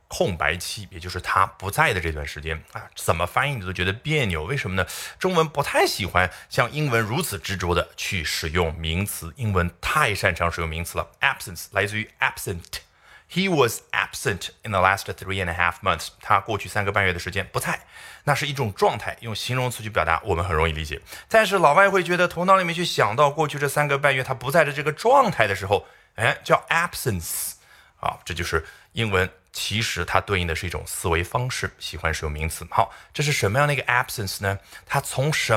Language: Chinese